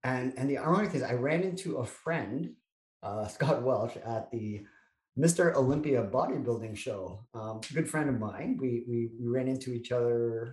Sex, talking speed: male, 190 wpm